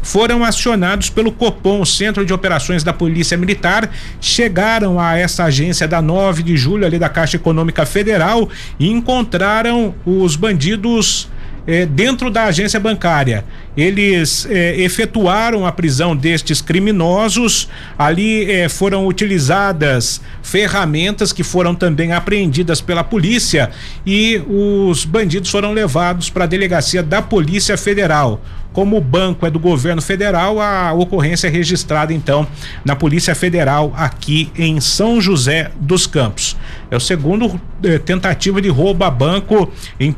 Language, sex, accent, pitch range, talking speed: Portuguese, male, Brazilian, 160-200 Hz, 135 wpm